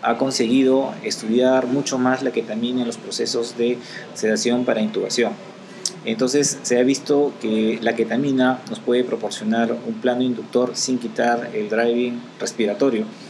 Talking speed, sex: 145 wpm, male